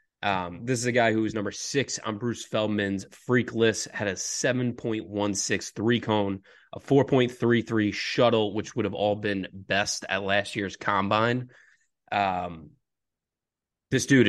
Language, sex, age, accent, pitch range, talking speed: English, male, 20-39, American, 95-115 Hz, 145 wpm